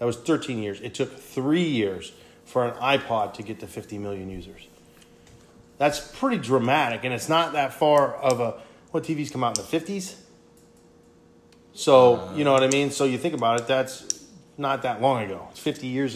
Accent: American